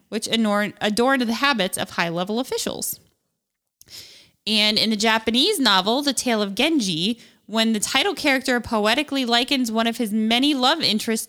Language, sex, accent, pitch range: English, female, American, 210-270 Hz